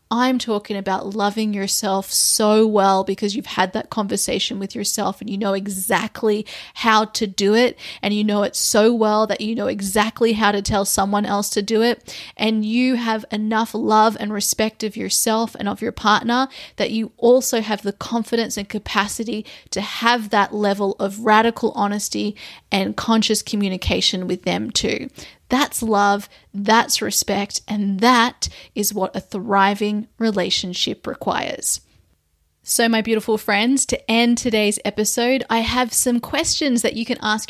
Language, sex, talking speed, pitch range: English, female, 165 wpm, 200-225 Hz